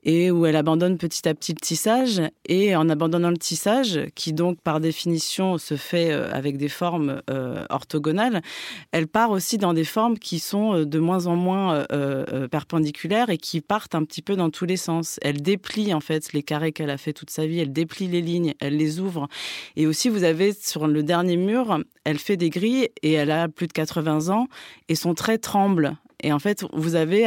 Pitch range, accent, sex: 155-195 Hz, French, female